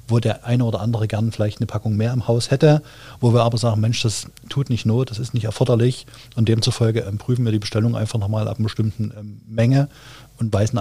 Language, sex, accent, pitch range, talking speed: German, male, German, 110-125 Hz, 220 wpm